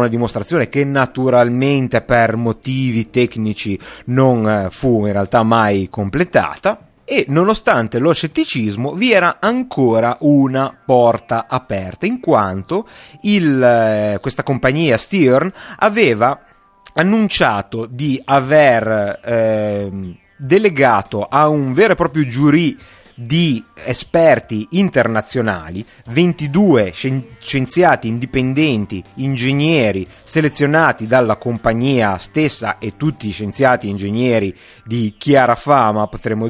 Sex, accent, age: male, native, 30-49